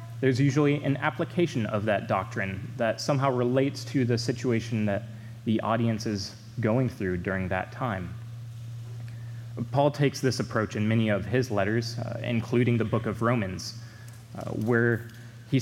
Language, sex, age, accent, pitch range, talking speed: English, male, 20-39, American, 115-125 Hz, 155 wpm